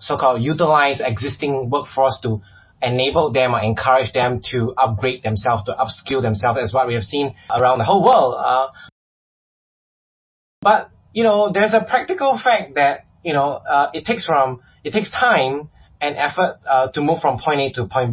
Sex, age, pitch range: male, 20-39, 115-150 Hz